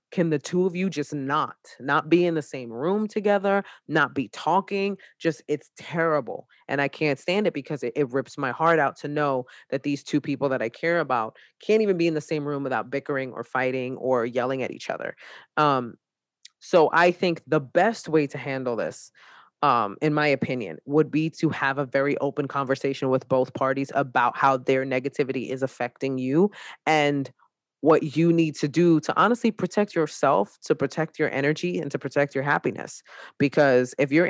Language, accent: English, American